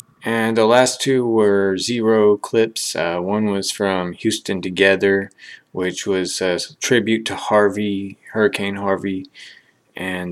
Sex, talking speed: male, 130 wpm